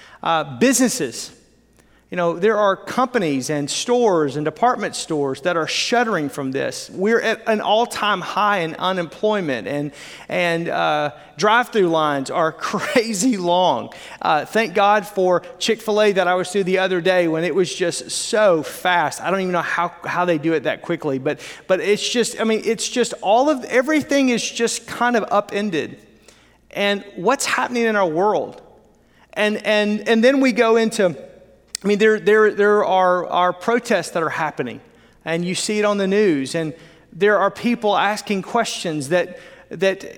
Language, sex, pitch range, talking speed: English, male, 170-220 Hz, 175 wpm